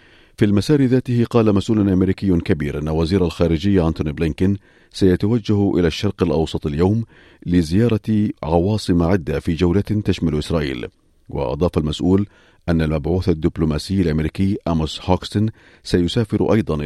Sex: male